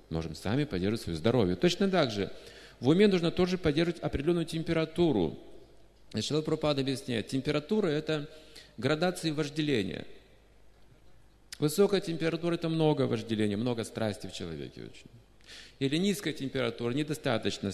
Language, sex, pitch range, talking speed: Russian, male, 100-145 Hz, 135 wpm